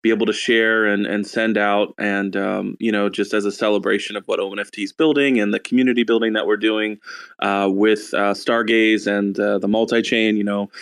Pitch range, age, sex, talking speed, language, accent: 100-115 Hz, 20-39, male, 215 wpm, English, American